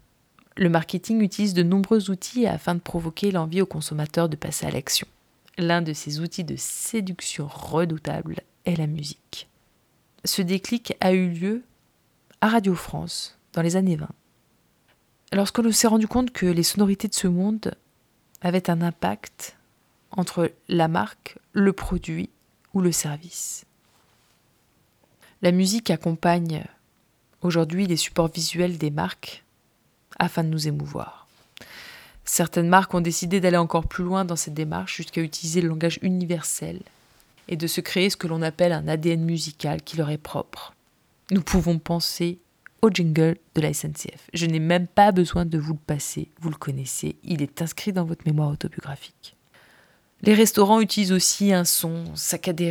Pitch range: 160-185 Hz